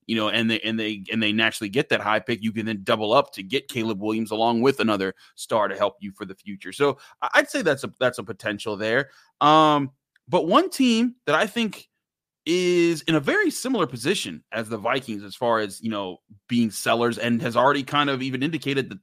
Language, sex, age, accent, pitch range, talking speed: English, male, 30-49, American, 115-145 Hz, 225 wpm